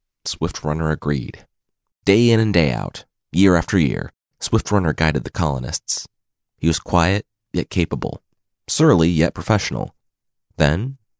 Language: English